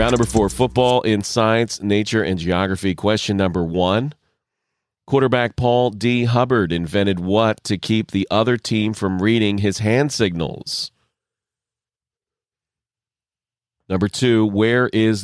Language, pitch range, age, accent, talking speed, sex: English, 100-115 Hz, 40-59, American, 125 wpm, male